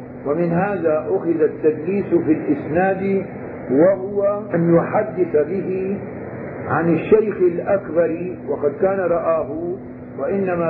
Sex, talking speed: male, 95 wpm